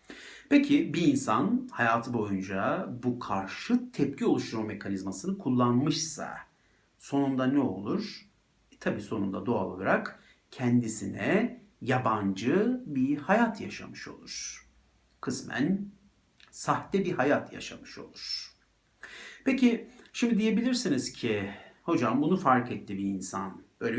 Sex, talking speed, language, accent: male, 105 wpm, Turkish, native